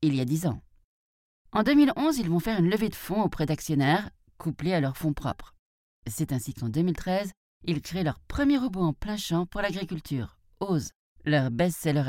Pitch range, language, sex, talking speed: 145-190 Hz, French, female, 190 wpm